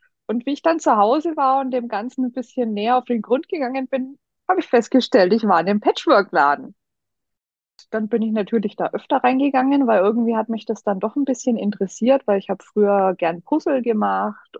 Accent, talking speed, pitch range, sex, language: German, 210 wpm, 200-260 Hz, female, German